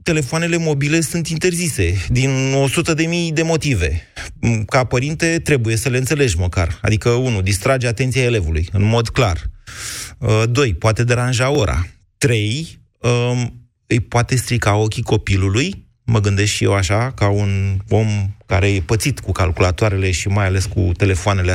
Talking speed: 150 wpm